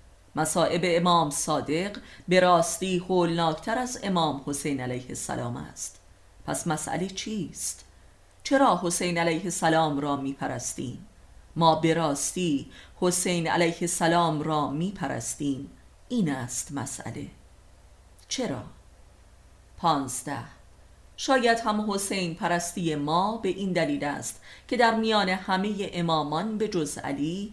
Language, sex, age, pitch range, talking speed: Persian, female, 30-49, 145-190 Hz, 110 wpm